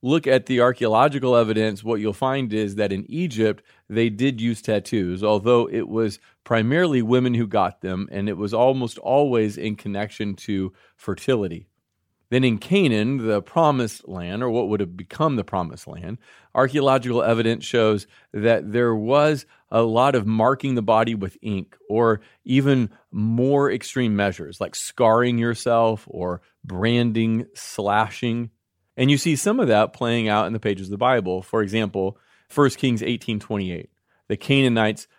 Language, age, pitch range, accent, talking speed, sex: English, 40-59, 105-130 Hz, American, 160 wpm, male